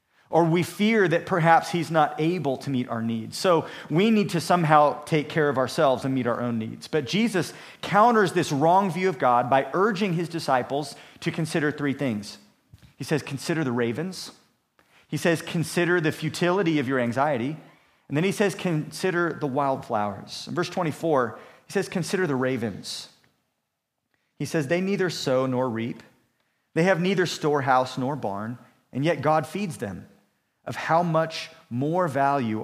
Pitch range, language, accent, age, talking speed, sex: 135-170 Hz, English, American, 40-59, 170 wpm, male